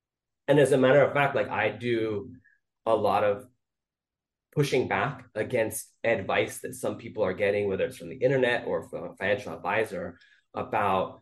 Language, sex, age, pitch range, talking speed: English, male, 20-39, 110-145 Hz, 170 wpm